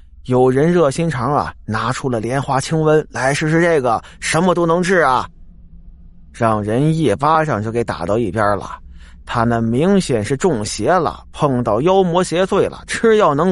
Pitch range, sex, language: 100-170 Hz, male, Chinese